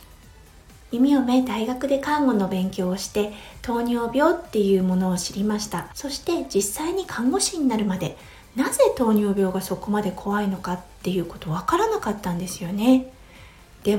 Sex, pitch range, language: female, 200-275 Hz, Japanese